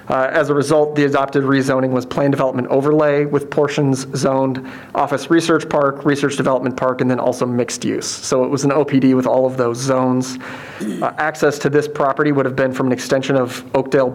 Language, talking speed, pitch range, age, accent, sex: English, 205 wpm, 130-150 Hz, 40-59, American, male